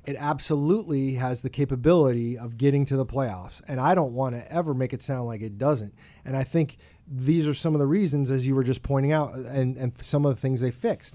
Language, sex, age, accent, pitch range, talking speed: English, male, 30-49, American, 125-155 Hz, 240 wpm